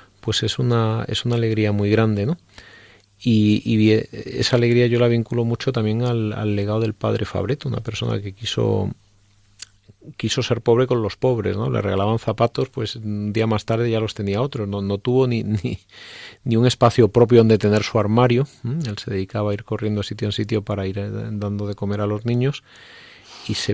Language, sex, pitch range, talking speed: Spanish, male, 105-120 Hz, 205 wpm